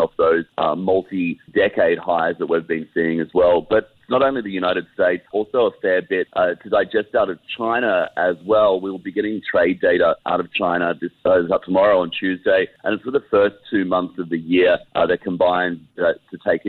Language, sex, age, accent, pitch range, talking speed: English, male, 40-59, Australian, 85-100 Hz, 210 wpm